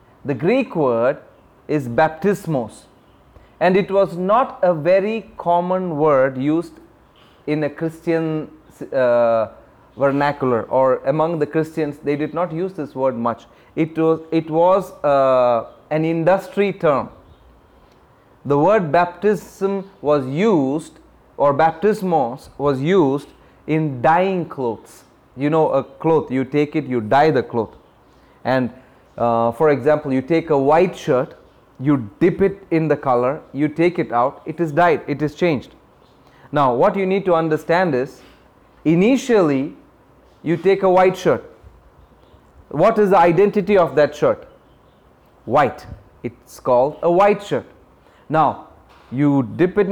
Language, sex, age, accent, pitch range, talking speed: English, male, 30-49, Indian, 135-180 Hz, 140 wpm